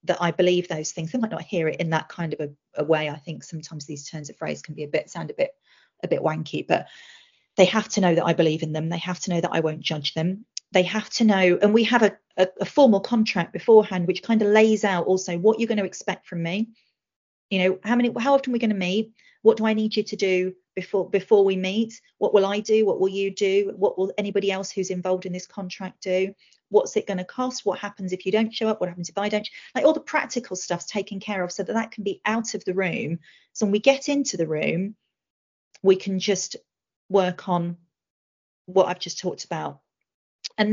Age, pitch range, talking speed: 30-49, 175-210 Hz, 250 wpm